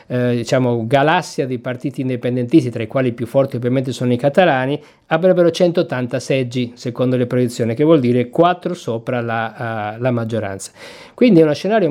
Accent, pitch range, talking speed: native, 120-150 Hz, 170 wpm